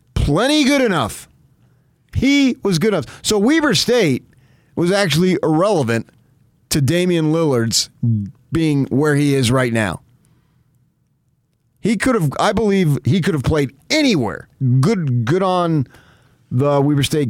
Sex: male